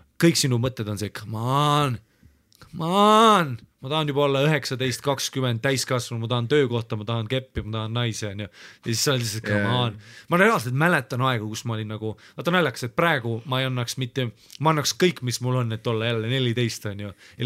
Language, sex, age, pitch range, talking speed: English, male, 30-49, 110-140 Hz, 205 wpm